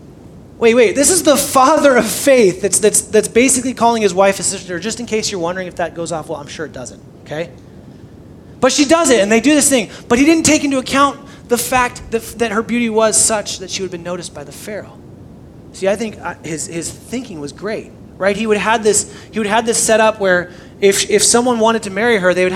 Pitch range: 170-220 Hz